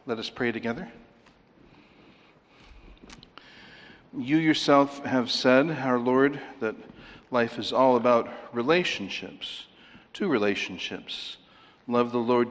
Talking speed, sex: 100 wpm, male